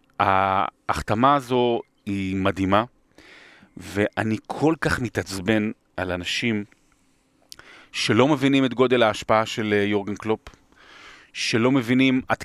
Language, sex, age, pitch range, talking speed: Hebrew, male, 30-49, 110-160 Hz, 100 wpm